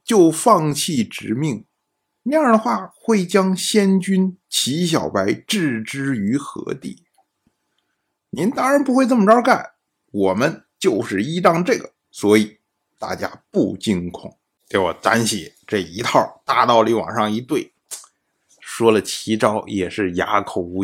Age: 50-69